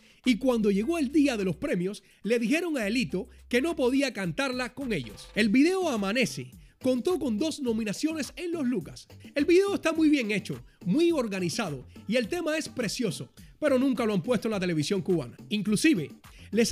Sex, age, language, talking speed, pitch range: male, 30-49, Spanish, 185 wpm, 205-295 Hz